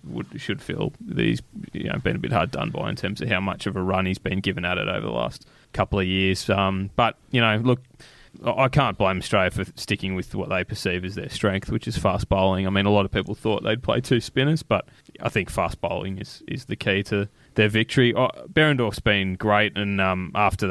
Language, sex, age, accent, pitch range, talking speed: English, male, 20-39, Australian, 95-110 Hz, 245 wpm